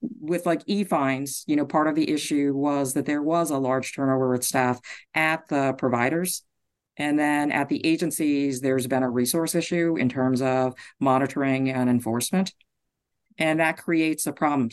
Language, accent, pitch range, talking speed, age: English, American, 140-180 Hz, 175 wpm, 50-69